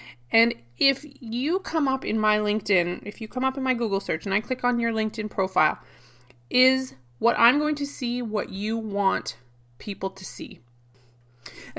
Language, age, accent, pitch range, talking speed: English, 30-49, American, 180-240 Hz, 185 wpm